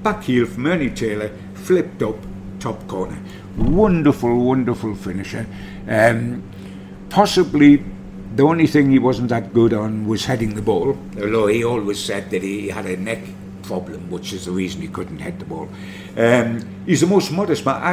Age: 60-79